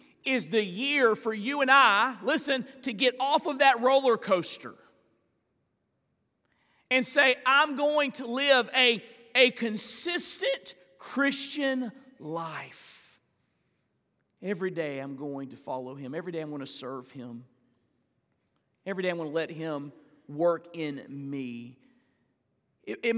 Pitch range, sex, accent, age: 155-235 Hz, male, American, 40-59